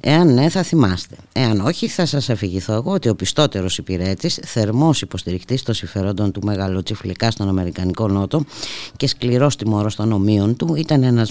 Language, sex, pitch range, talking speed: Greek, female, 95-135 Hz, 165 wpm